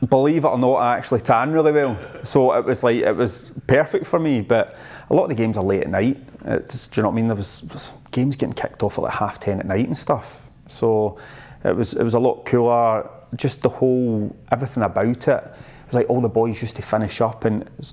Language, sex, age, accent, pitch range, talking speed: English, male, 30-49, British, 105-140 Hz, 255 wpm